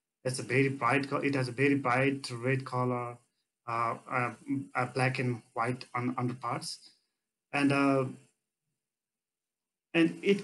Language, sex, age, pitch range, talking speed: English, male, 30-49, 120-145 Hz, 150 wpm